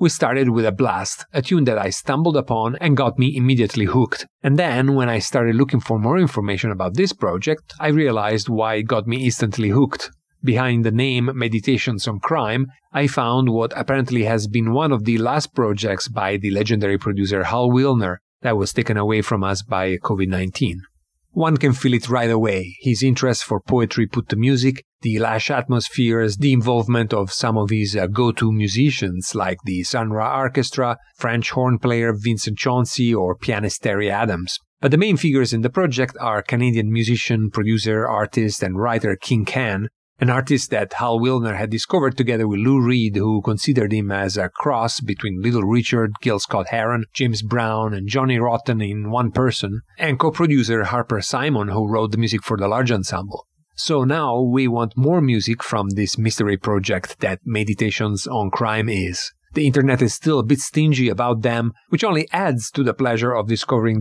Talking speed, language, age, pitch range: 185 wpm, English, 40-59, 105-130 Hz